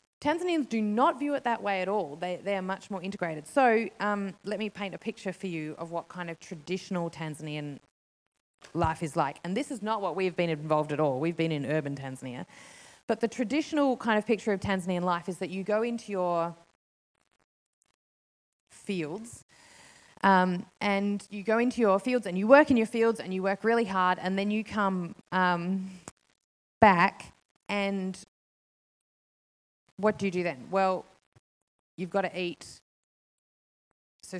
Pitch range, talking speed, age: 170-215 Hz, 175 wpm, 20-39